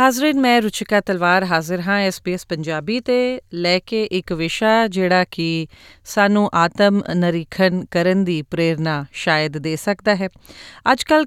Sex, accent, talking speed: female, Indian, 135 wpm